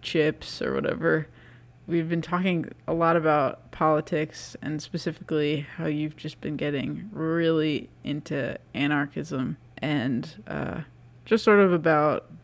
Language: English